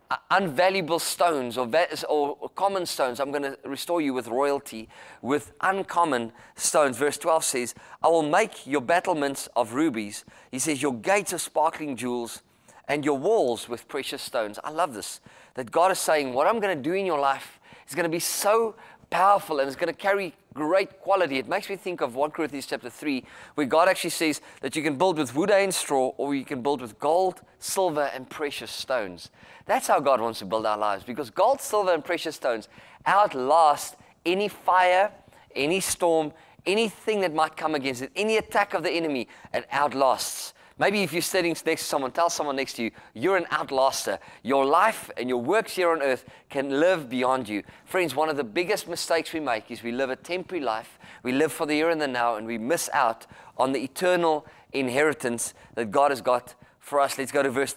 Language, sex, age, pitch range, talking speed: English, male, 30-49, 130-175 Hz, 205 wpm